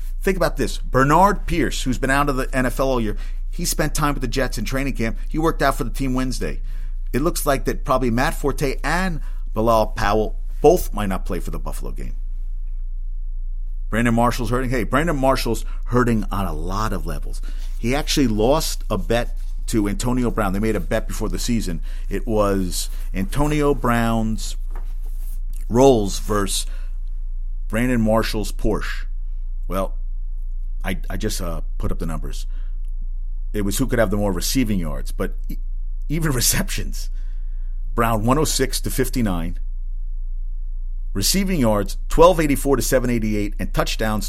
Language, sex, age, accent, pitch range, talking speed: English, male, 50-69, American, 75-120 Hz, 165 wpm